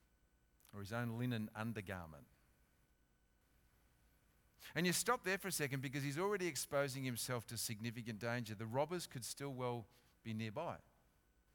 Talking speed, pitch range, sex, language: 140 wpm, 120-165 Hz, male, English